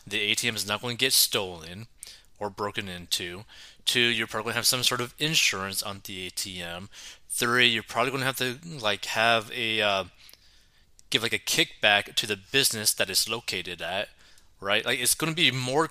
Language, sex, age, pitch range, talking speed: English, male, 20-39, 100-125 Hz, 195 wpm